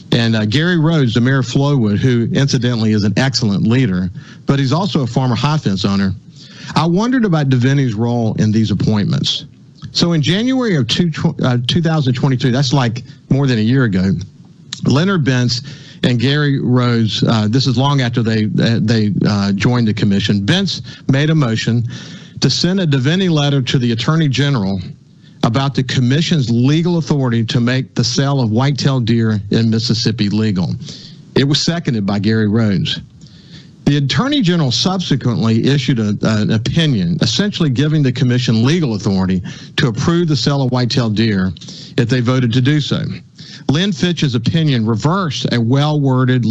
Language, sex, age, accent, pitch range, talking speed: English, male, 50-69, American, 115-155 Hz, 165 wpm